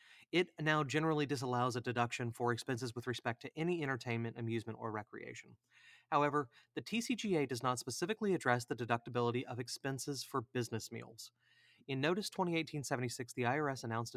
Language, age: English, 30-49